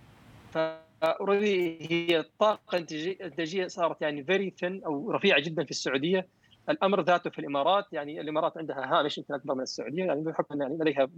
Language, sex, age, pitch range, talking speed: Arabic, male, 40-59, 140-185 Hz, 150 wpm